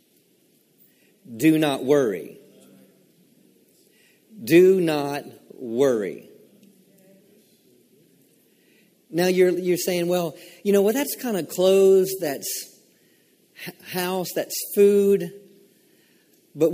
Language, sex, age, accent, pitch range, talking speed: English, male, 50-69, American, 165-205 Hz, 85 wpm